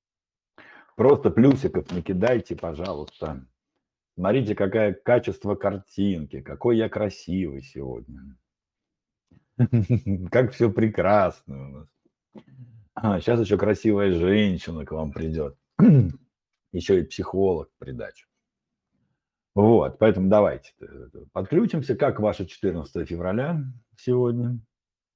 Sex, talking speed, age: male, 90 wpm, 50-69